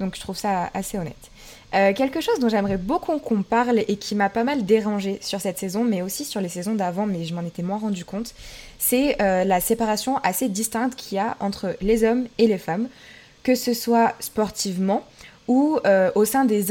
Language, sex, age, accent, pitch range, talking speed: French, female, 20-39, French, 190-225 Hz, 215 wpm